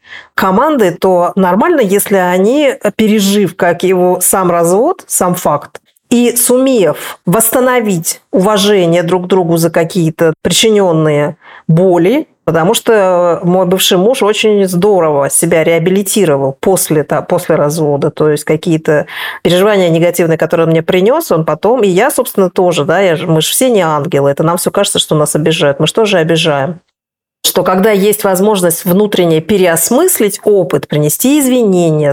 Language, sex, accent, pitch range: Russian, female, native, 165-205 Hz